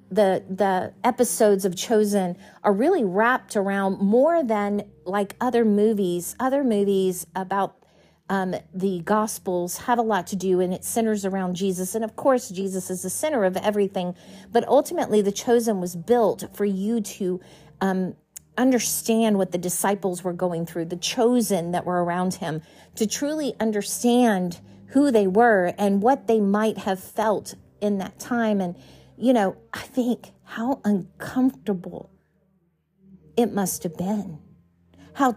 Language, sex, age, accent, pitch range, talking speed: English, female, 40-59, American, 180-225 Hz, 150 wpm